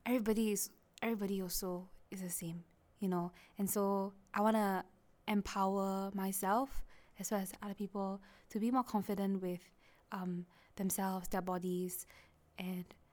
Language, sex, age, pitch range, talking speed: English, female, 20-39, 185-230 Hz, 135 wpm